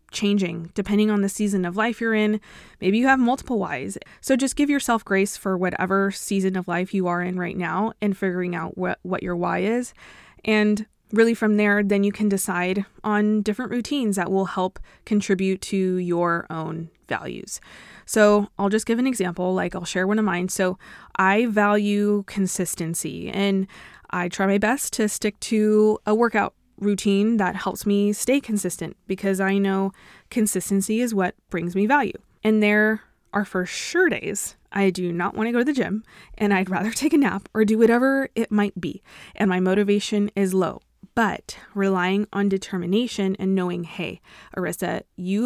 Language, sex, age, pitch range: English, female, 20-39, 190-215 Hz